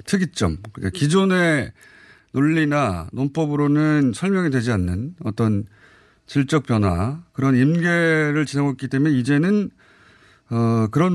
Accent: native